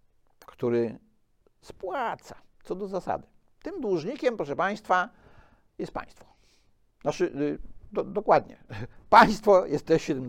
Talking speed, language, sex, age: 105 wpm, Polish, male, 60-79